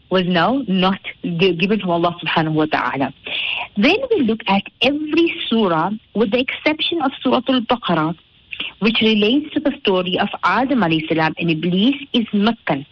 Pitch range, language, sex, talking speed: 180-270 Hz, English, female, 165 wpm